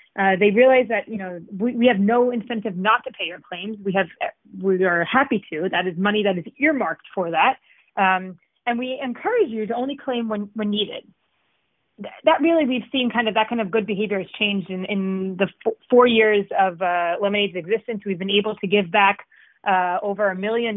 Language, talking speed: English, 215 wpm